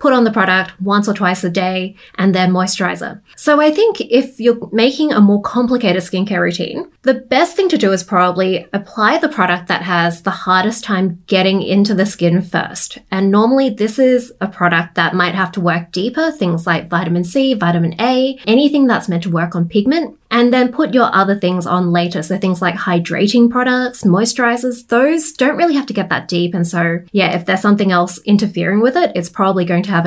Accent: Australian